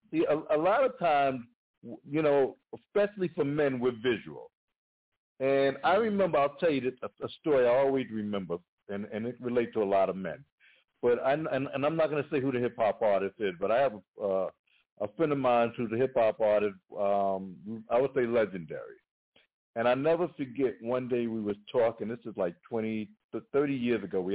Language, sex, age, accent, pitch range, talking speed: English, male, 60-79, American, 110-145 Hz, 210 wpm